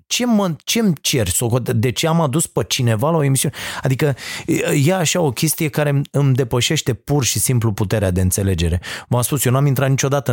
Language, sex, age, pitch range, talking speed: Romanian, male, 30-49, 120-165 Hz, 200 wpm